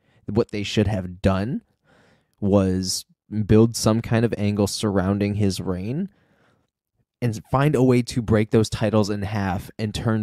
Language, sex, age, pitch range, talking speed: English, male, 20-39, 95-115 Hz, 155 wpm